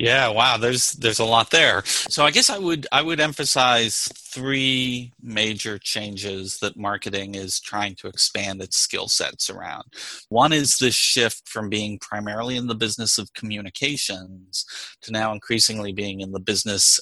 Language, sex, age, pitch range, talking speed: English, male, 30-49, 105-130 Hz, 165 wpm